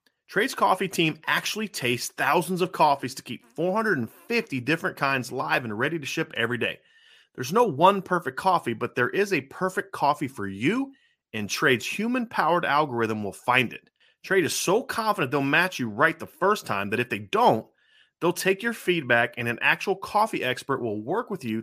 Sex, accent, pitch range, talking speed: male, American, 125-190 Hz, 190 wpm